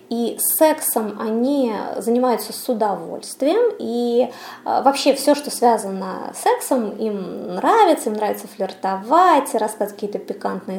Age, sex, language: 20-39, female, Russian